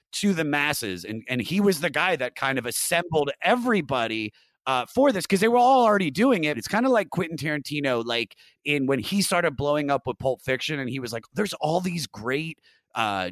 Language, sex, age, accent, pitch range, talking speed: English, male, 30-49, American, 120-175 Hz, 220 wpm